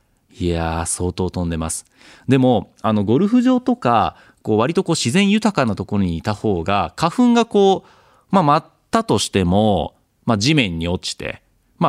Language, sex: Japanese, male